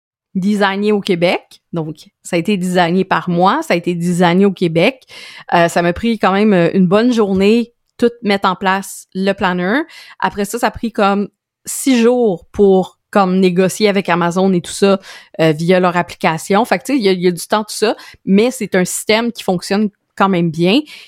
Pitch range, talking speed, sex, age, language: 180-220 Hz, 210 wpm, female, 20-39, French